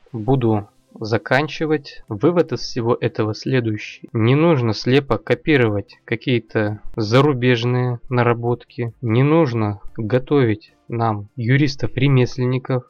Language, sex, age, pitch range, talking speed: Russian, male, 20-39, 115-140 Hz, 90 wpm